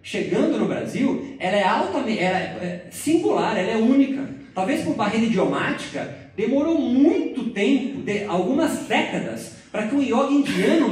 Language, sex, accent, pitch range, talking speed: Portuguese, male, Brazilian, 170-255 Hz, 145 wpm